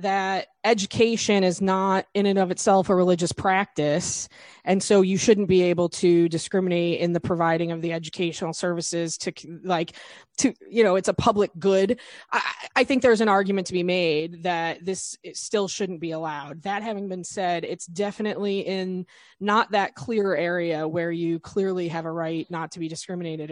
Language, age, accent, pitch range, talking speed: English, 20-39, American, 170-200 Hz, 180 wpm